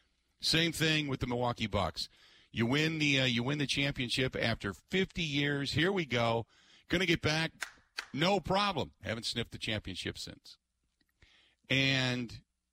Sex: male